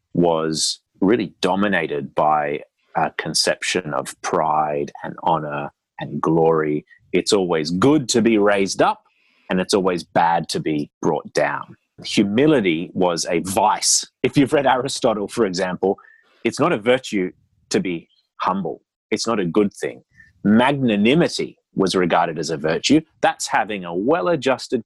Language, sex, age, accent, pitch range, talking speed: English, male, 30-49, Australian, 85-105 Hz, 140 wpm